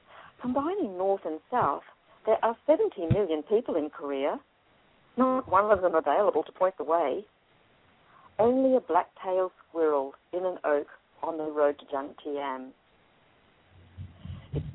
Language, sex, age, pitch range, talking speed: English, female, 50-69, 145-195 Hz, 135 wpm